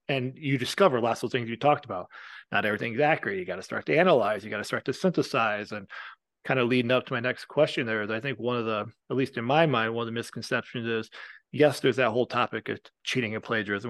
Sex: male